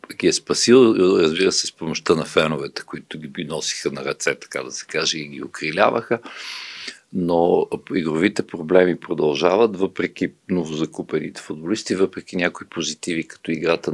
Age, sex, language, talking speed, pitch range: 50-69, male, Bulgarian, 145 wpm, 80-110 Hz